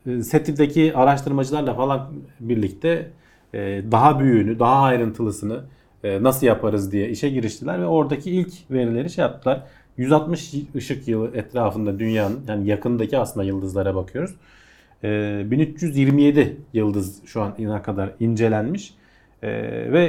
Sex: male